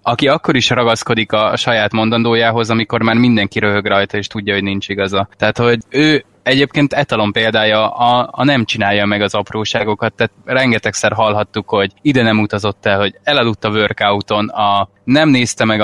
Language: Hungarian